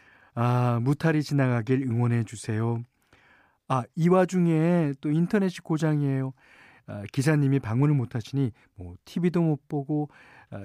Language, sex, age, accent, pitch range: Korean, male, 40-59, native, 110-155 Hz